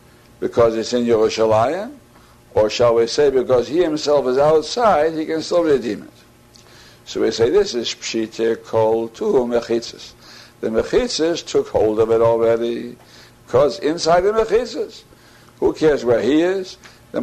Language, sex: English, male